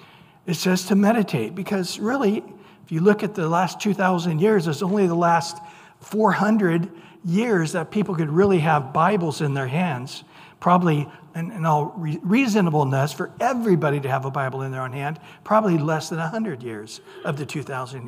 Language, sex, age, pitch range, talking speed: English, male, 60-79, 155-190 Hz, 170 wpm